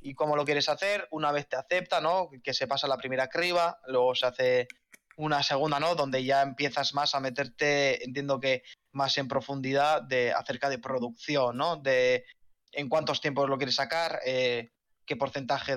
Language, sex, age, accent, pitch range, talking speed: Spanish, male, 20-39, Spanish, 135-160 Hz, 185 wpm